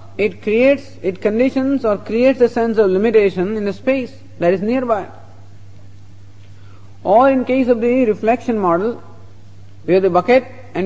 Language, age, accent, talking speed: English, 50-69, Indian, 155 wpm